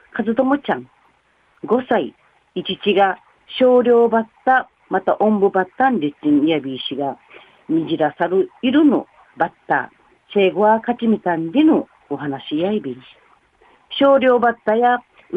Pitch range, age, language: 165-245 Hz, 40-59, Japanese